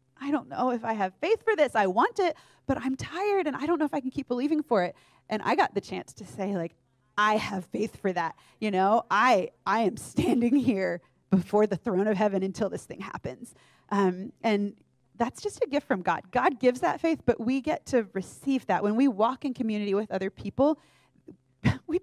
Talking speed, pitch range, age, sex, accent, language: 225 wpm, 185-260 Hz, 30-49, female, American, English